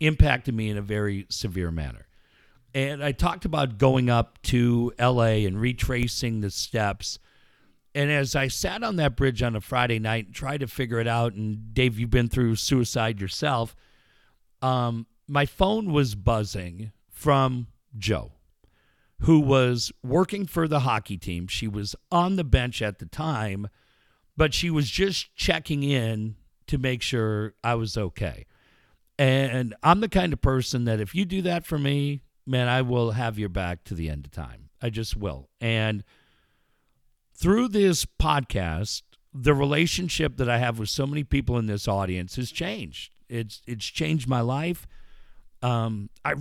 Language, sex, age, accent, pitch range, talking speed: English, male, 50-69, American, 110-145 Hz, 165 wpm